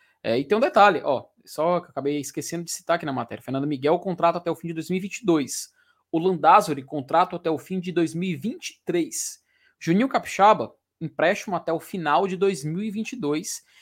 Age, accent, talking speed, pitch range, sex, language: 20-39, Brazilian, 170 wpm, 155-210 Hz, male, Portuguese